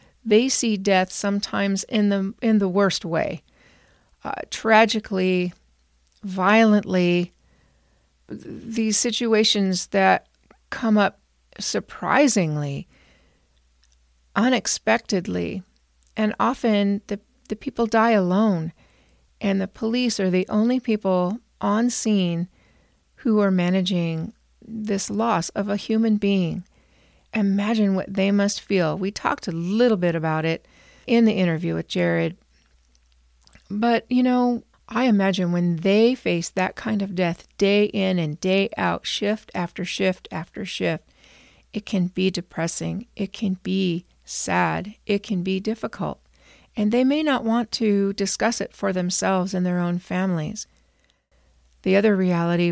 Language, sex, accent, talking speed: English, female, American, 130 wpm